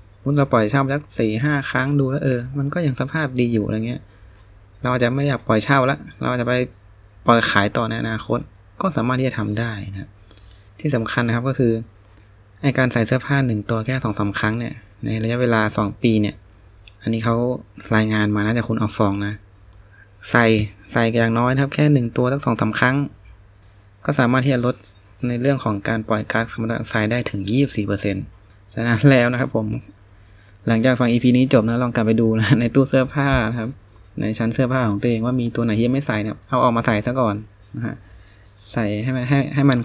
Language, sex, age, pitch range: Thai, male, 20-39, 105-125 Hz